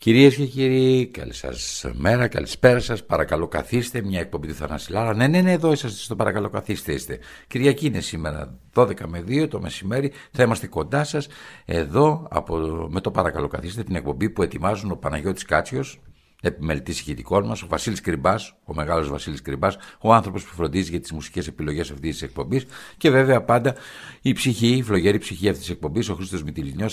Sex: male